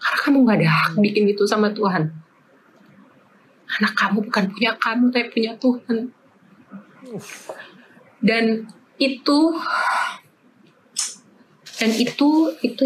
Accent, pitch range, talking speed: native, 195-250 Hz, 105 wpm